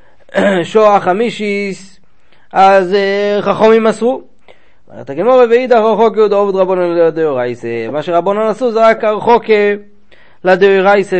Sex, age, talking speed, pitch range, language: male, 30-49, 95 wpm, 155-200 Hz, Hebrew